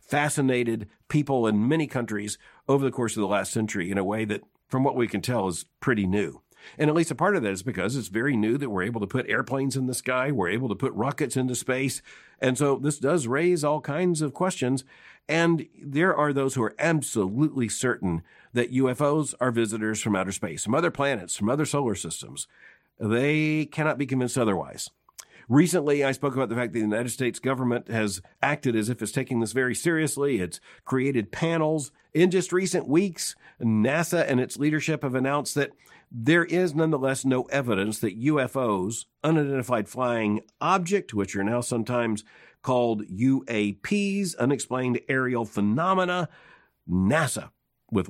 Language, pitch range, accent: English, 115-150 Hz, American